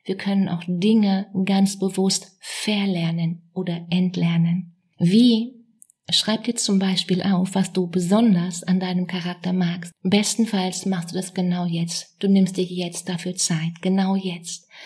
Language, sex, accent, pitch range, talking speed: German, female, German, 180-200 Hz, 145 wpm